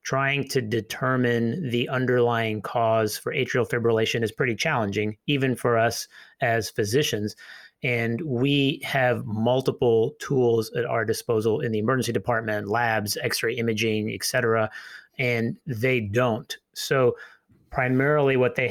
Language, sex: English, male